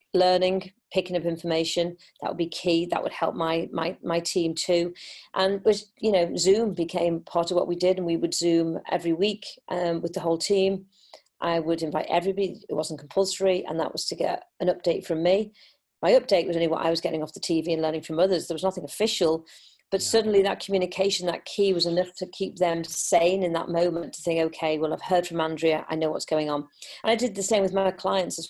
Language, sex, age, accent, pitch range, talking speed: English, female, 40-59, British, 165-190 Hz, 230 wpm